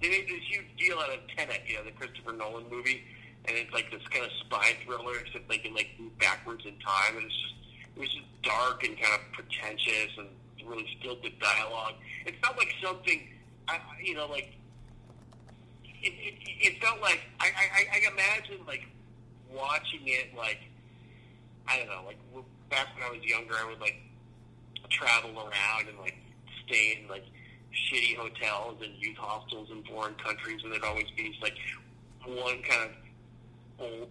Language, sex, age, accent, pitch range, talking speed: English, male, 40-59, American, 110-125 Hz, 180 wpm